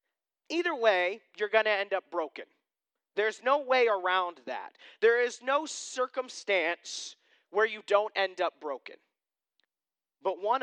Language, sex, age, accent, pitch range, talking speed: English, male, 30-49, American, 145-215 Hz, 140 wpm